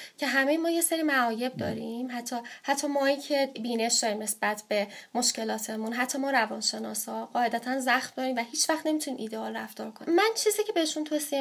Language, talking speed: Persian, 180 wpm